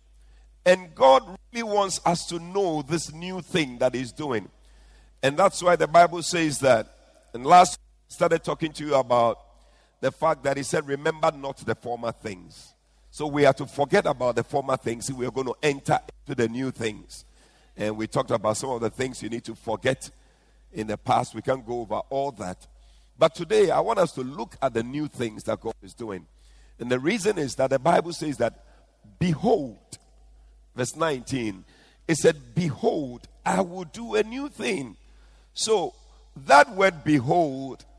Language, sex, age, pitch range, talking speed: English, male, 50-69, 120-185 Hz, 185 wpm